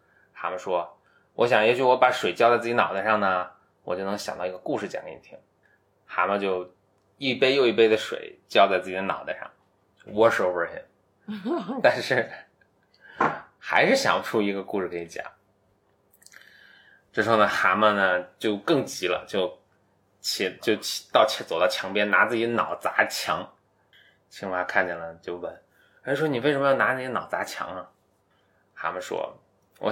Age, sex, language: 20-39, male, Chinese